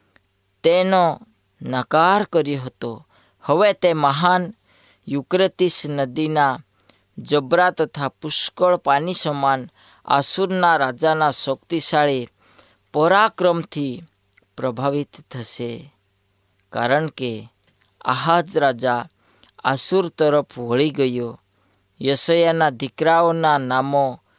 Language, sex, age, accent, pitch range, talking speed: Gujarati, female, 20-39, native, 125-165 Hz, 75 wpm